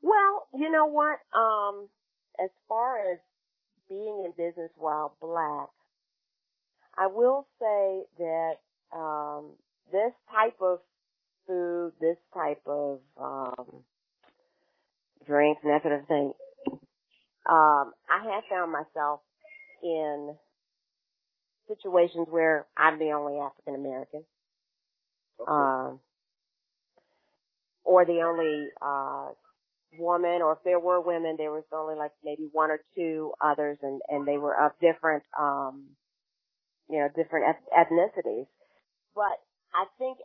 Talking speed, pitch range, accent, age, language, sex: 120 wpm, 150-185 Hz, American, 40-59, English, female